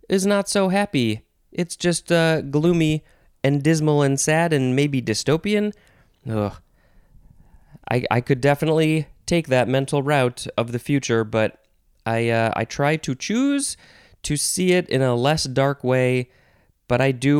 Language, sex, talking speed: English, male, 150 wpm